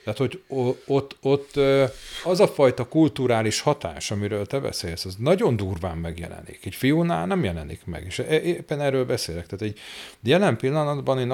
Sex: male